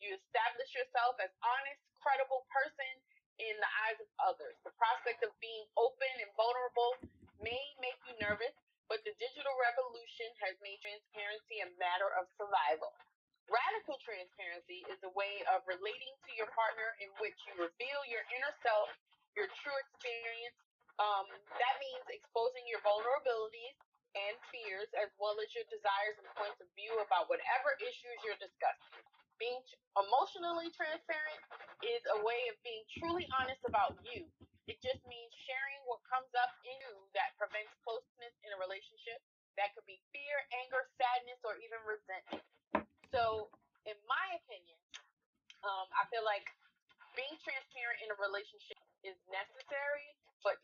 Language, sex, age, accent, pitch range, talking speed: English, female, 30-49, American, 205-270 Hz, 150 wpm